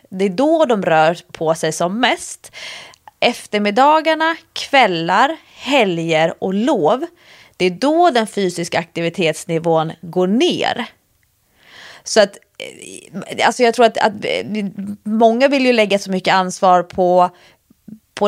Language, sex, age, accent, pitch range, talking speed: English, female, 30-49, Swedish, 170-225 Hz, 120 wpm